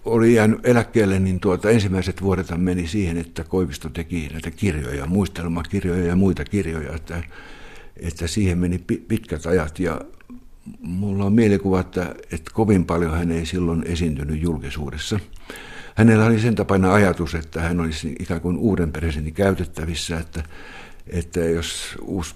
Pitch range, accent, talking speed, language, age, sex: 80-95 Hz, native, 145 wpm, Finnish, 60-79, male